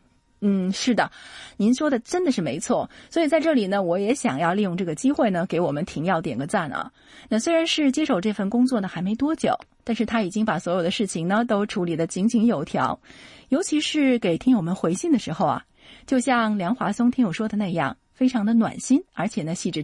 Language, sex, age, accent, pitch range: Chinese, female, 30-49, native, 185-260 Hz